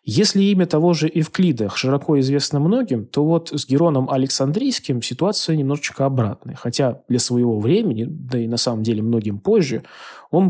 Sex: male